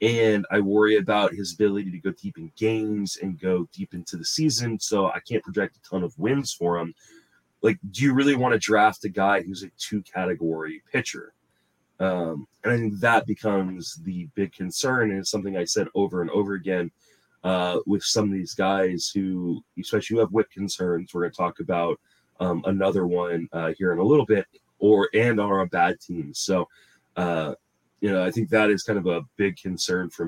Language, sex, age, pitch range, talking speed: English, male, 30-49, 90-110 Hz, 210 wpm